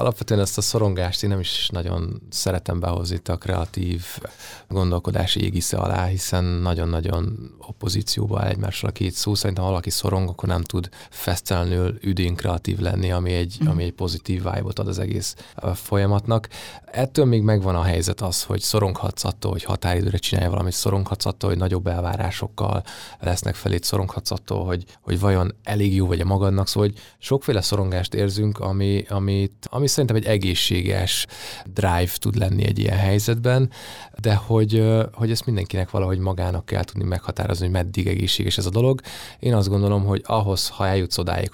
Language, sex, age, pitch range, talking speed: Hungarian, male, 20-39, 90-105 Hz, 155 wpm